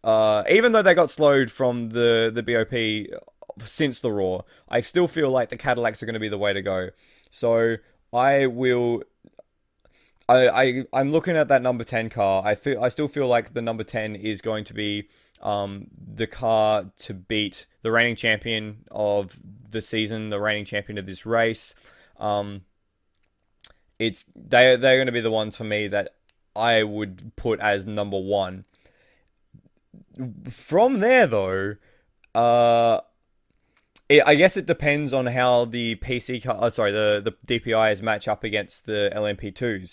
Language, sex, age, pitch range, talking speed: English, male, 20-39, 105-125 Hz, 165 wpm